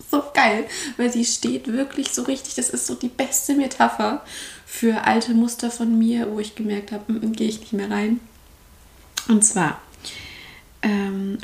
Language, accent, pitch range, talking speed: German, German, 195-235 Hz, 170 wpm